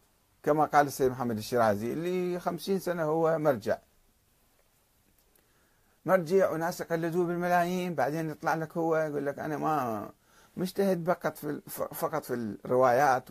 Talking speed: 125 wpm